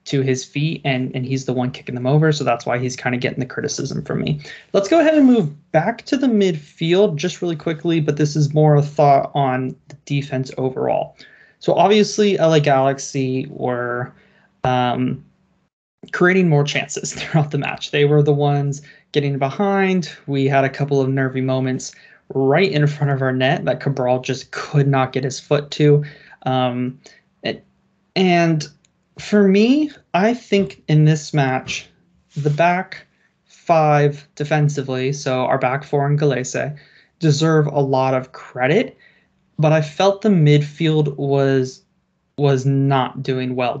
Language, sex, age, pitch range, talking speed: English, male, 20-39, 135-170 Hz, 165 wpm